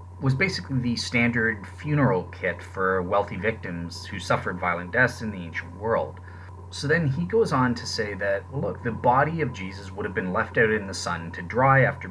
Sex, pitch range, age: male, 90-115 Hz, 30-49